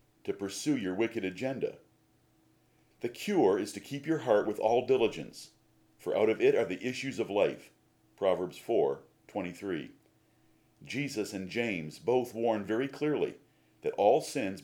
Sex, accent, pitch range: male, American, 110-140 Hz